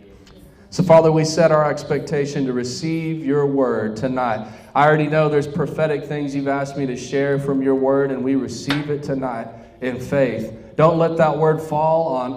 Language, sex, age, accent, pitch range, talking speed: English, male, 30-49, American, 125-155 Hz, 185 wpm